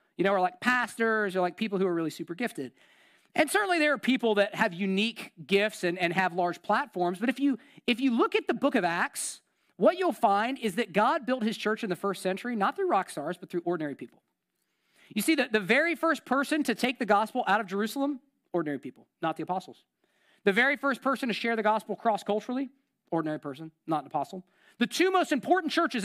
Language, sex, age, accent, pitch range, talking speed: English, male, 40-59, American, 185-270 Hz, 225 wpm